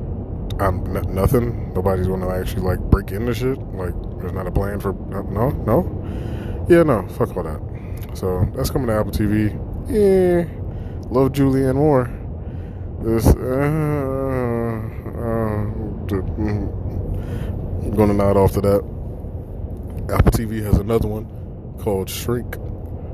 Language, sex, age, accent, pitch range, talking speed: English, male, 20-39, American, 95-110 Hz, 125 wpm